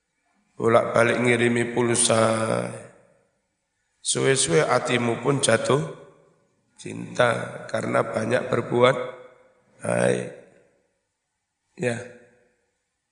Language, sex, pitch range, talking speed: Indonesian, male, 115-130 Hz, 60 wpm